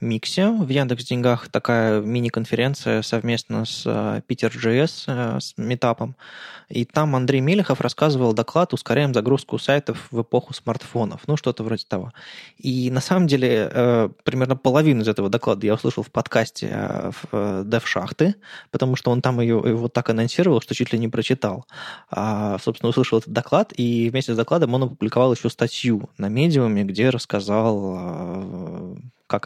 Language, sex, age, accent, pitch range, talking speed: Russian, male, 20-39, native, 110-130 Hz, 145 wpm